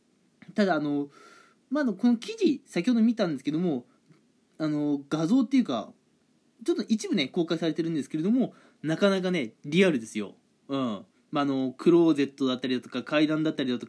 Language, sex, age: Japanese, male, 20-39